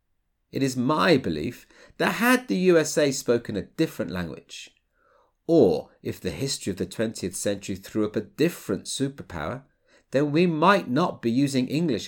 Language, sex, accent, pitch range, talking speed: English, male, British, 100-160 Hz, 160 wpm